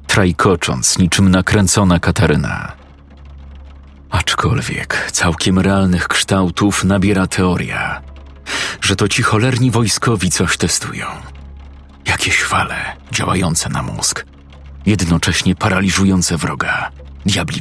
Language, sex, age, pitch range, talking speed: Polish, male, 40-59, 95-115 Hz, 90 wpm